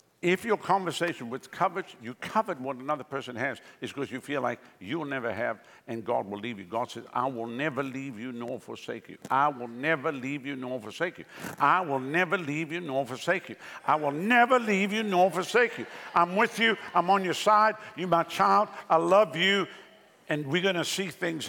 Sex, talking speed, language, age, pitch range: male, 215 wpm, English, 60-79, 155-210 Hz